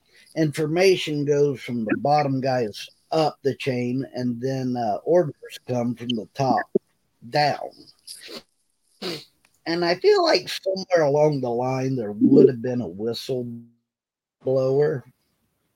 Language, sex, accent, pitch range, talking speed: English, male, American, 120-150 Hz, 120 wpm